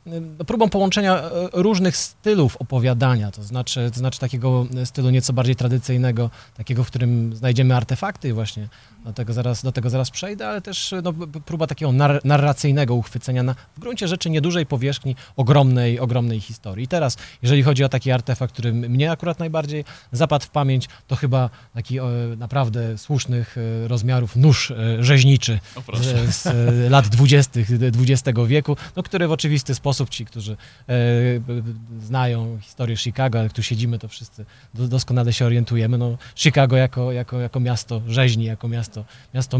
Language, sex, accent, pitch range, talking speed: Polish, male, native, 120-145 Hz, 145 wpm